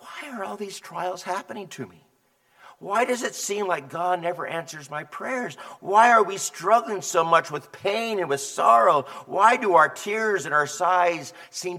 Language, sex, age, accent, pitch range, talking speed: English, male, 50-69, American, 135-180 Hz, 185 wpm